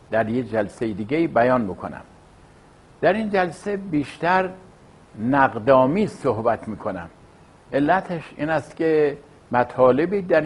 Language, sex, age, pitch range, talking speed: English, male, 60-79, 120-165 Hz, 110 wpm